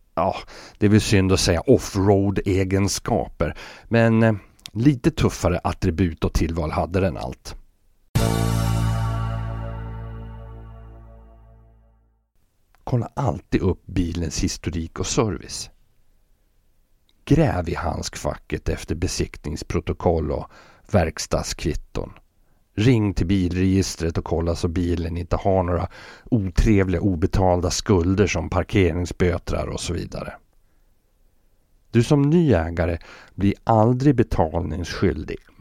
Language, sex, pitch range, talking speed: Swedish, male, 85-115 Hz, 95 wpm